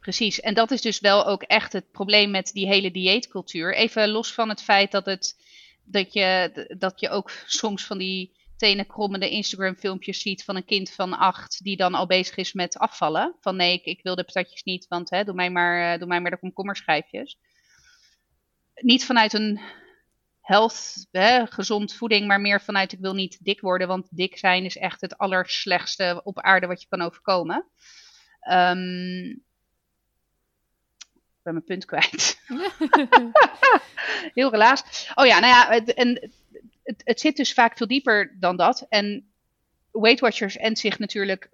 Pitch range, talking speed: 185-225 Hz, 160 wpm